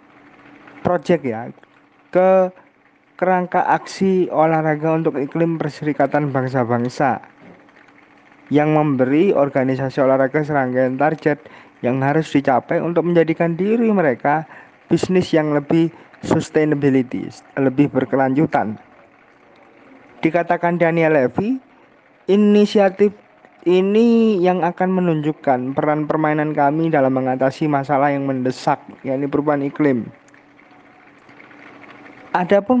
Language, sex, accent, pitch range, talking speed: Indonesian, male, native, 145-175 Hz, 90 wpm